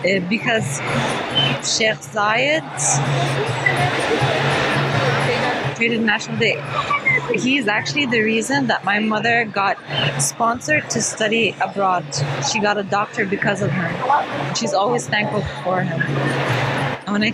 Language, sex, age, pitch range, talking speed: English, female, 20-39, 210-265 Hz, 110 wpm